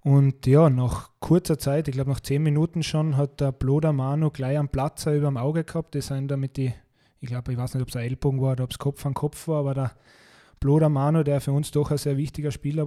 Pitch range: 130-145 Hz